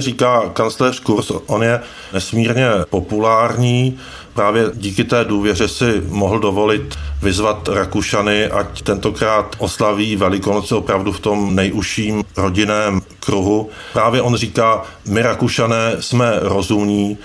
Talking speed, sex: 115 wpm, male